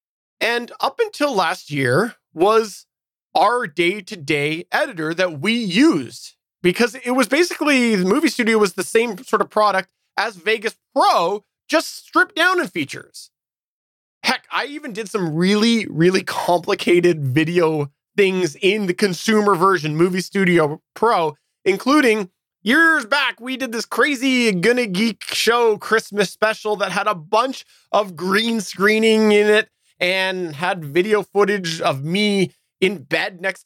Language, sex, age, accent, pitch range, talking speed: English, male, 20-39, American, 170-225 Hz, 145 wpm